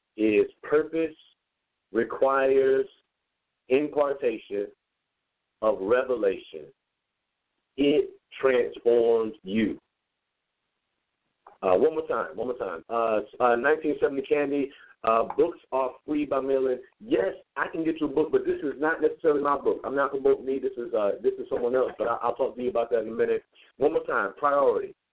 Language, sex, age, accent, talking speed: English, male, 50-69, American, 155 wpm